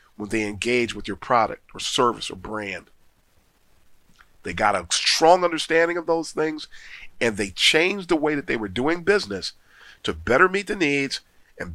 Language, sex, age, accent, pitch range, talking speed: English, male, 40-59, American, 95-135 Hz, 175 wpm